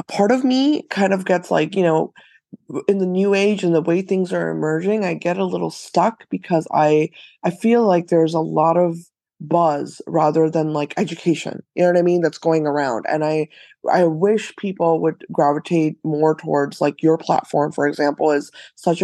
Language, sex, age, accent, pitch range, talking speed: English, female, 20-39, American, 155-180 Hz, 195 wpm